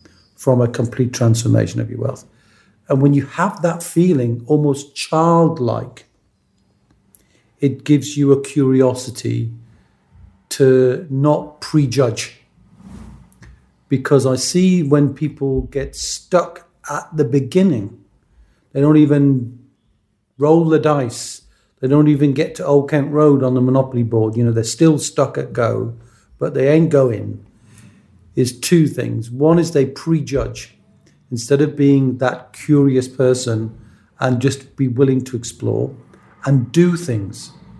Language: English